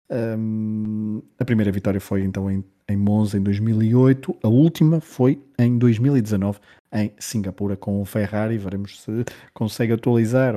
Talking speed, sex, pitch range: 135 wpm, male, 100-125 Hz